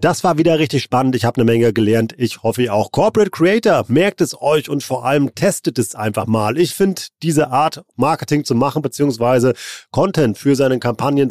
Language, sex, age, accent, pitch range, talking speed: German, male, 40-59, German, 120-150 Hz, 200 wpm